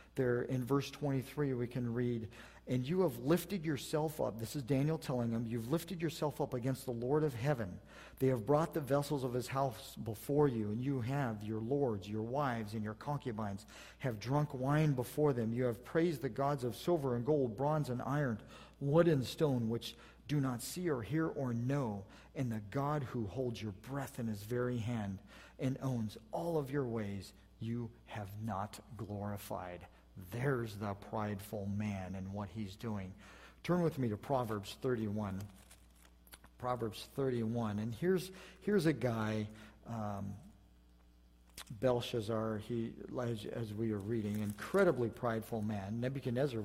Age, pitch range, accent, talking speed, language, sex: 50-69, 105-135 Hz, American, 165 wpm, English, male